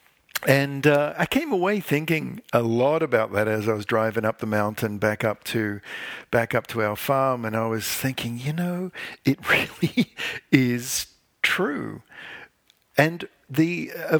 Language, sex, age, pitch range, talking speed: English, male, 50-69, 110-150 Hz, 160 wpm